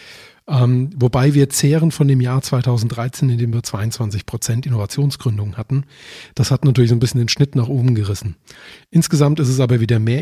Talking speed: 190 wpm